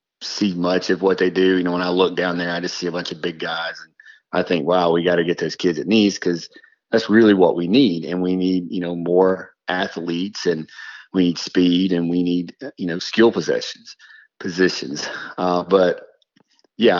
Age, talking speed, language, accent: 30-49, 215 wpm, English, American